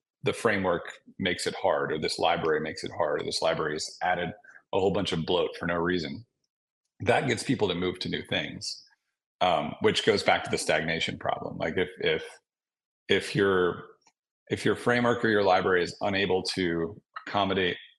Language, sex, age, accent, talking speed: English, male, 30-49, American, 185 wpm